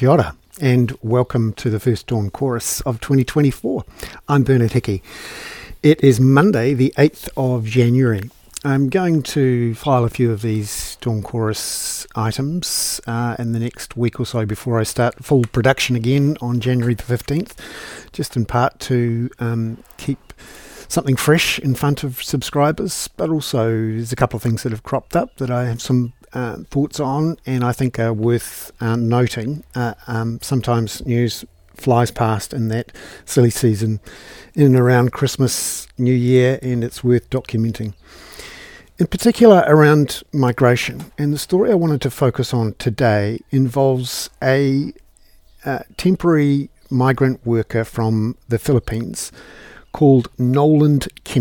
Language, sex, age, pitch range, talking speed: English, male, 50-69, 115-140 Hz, 150 wpm